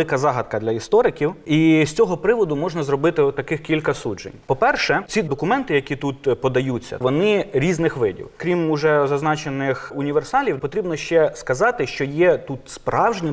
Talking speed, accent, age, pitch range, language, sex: 155 wpm, native, 30-49, 145-210 Hz, Ukrainian, male